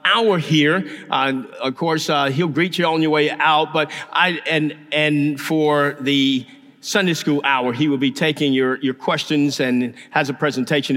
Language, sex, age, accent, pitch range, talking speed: English, male, 50-69, American, 140-180 Hz, 180 wpm